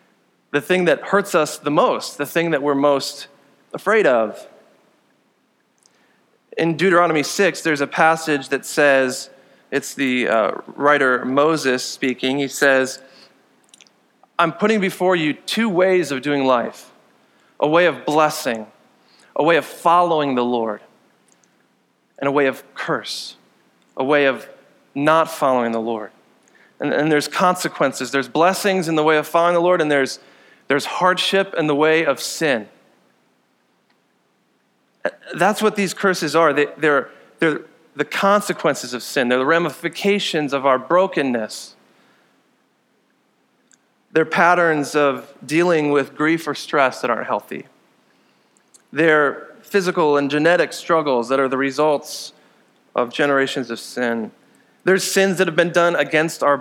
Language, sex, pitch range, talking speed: English, male, 135-170 Hz, 140 wpm